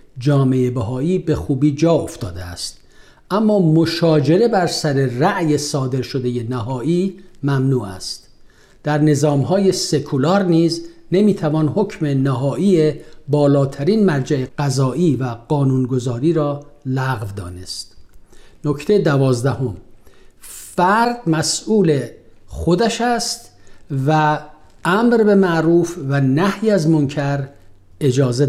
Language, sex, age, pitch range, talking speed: Persian, male, 50-69, 130-175 Hz, 95 wpm